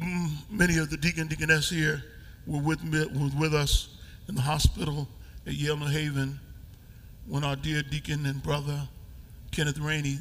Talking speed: 155 wpm